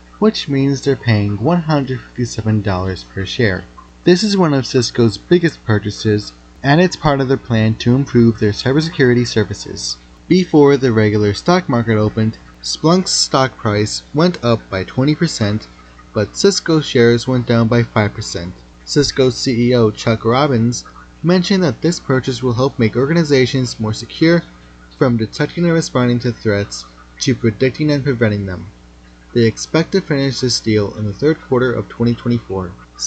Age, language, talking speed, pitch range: 20-39, English, 150 wpm, 105-140 Hz